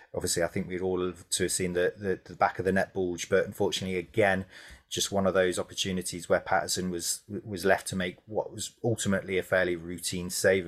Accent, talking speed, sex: British, 220 wpm, male